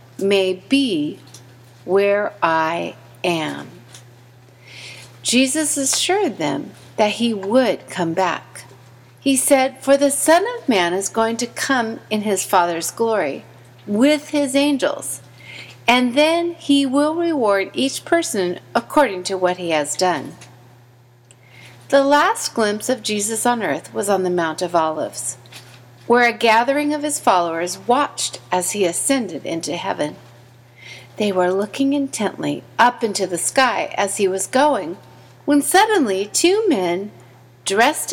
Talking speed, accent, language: 135 wpm, American, English